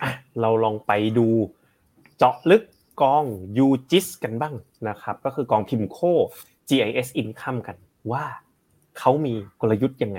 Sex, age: male, 20-39